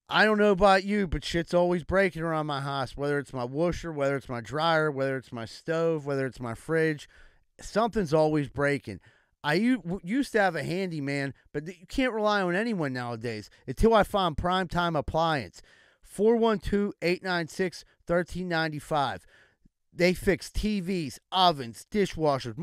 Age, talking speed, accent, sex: 30-49, 145 wpm, American, male